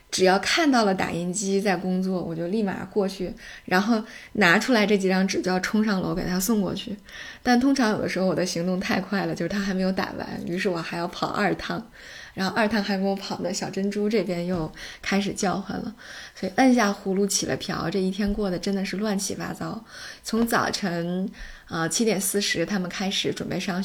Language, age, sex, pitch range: Chinese, 20-39, female, 180-215 Hz